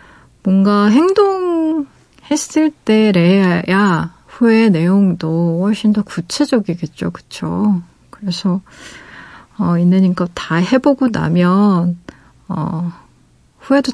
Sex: female